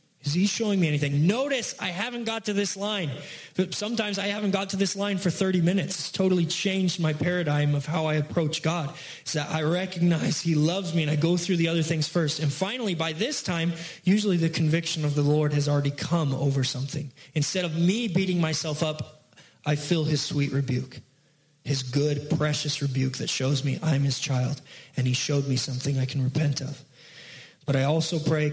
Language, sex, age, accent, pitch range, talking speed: English, male, 20-39, American, 140-180 Hz, 205 wpm